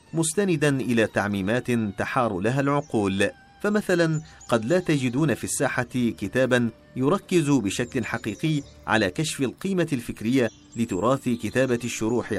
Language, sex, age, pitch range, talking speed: Arabic, male, 40-59, 110-155 Hz, 110 wpm